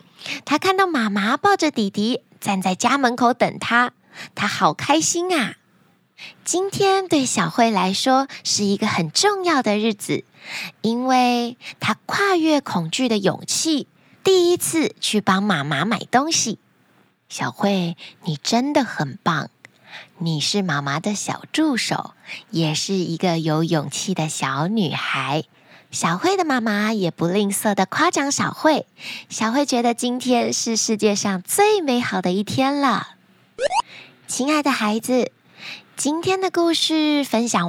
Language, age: Chinese, 20-39